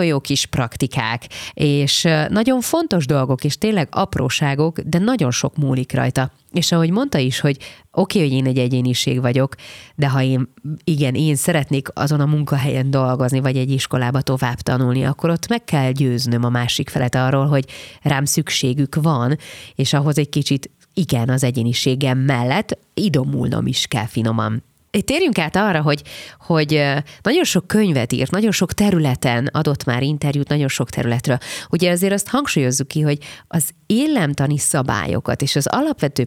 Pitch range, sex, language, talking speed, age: 130-165 Hz, female, Hungarian, 160 wpm, 30-49